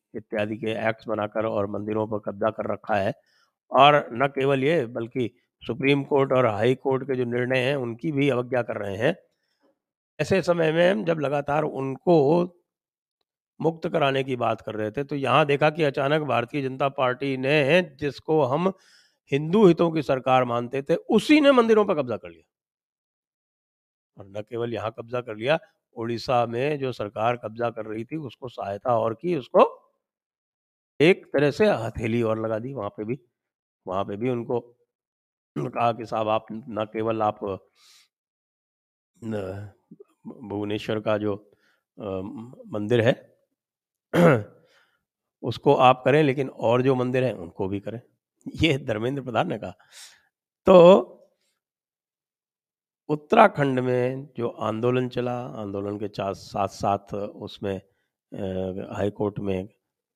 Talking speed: 135 wpm